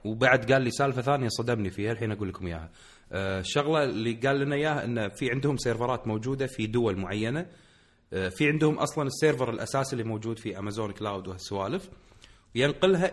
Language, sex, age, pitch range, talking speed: Arabic, male, 30-49, 105-145 Hz, 175 wpm